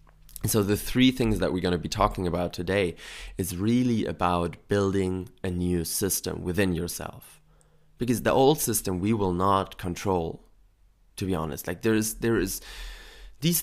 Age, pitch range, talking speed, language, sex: 20-39, 90-110 Hz, 165 wpm, English, male